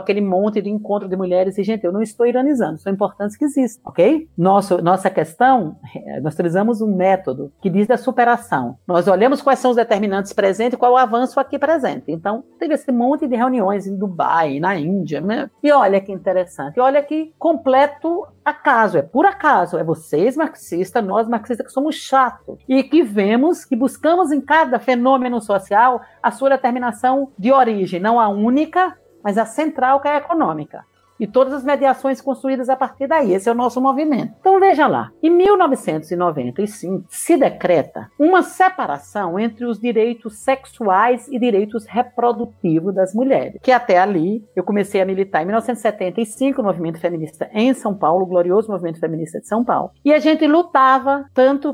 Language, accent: Portuguese, Brazilian